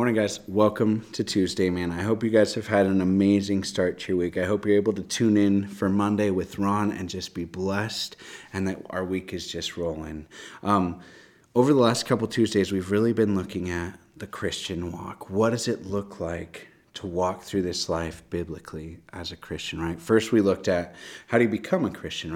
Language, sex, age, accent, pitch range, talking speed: English, male, 30-49, American, 85-105 Hz, 210 wpm